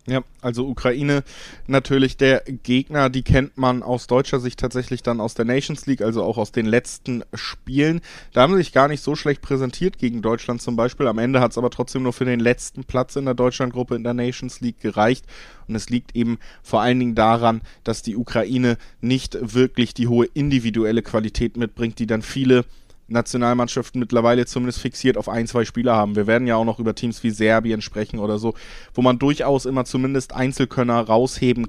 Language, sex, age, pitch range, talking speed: German, male, 20-39, 115-130 Hz, 200 wpm